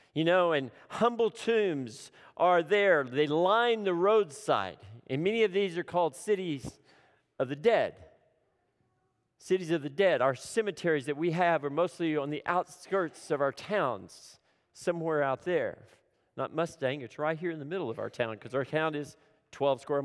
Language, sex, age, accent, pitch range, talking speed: English, male, 40-59, American, 135-175 Hz, 175 wpm